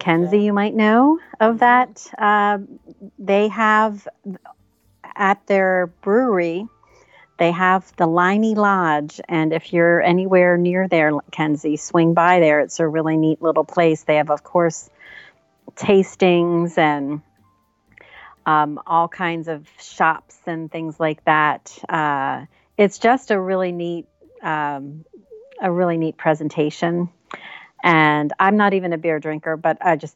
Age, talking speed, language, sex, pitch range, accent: 40-59, 135 wpm, English, female, 160-205 Hz, American